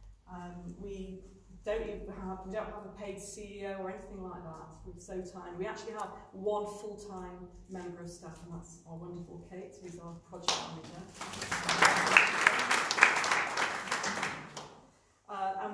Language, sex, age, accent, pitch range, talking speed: English, female, 40-59, British, 180-210 Hz, 145 wpm